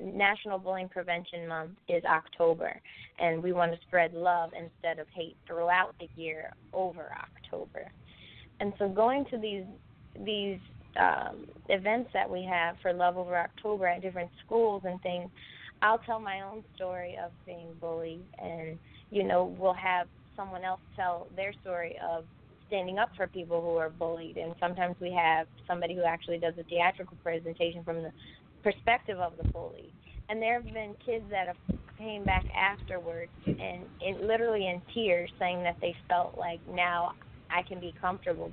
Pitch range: 170-195 Hz